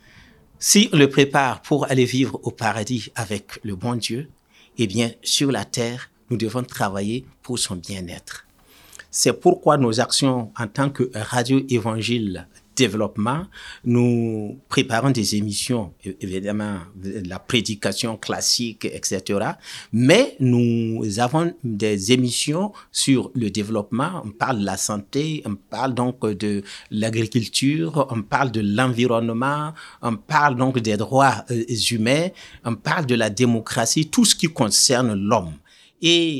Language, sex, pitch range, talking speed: French, male, 110-140 Hz, 135 wpm